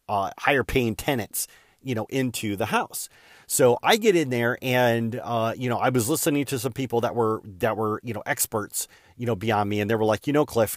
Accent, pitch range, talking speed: American, 110-135 Hz, 235 wpm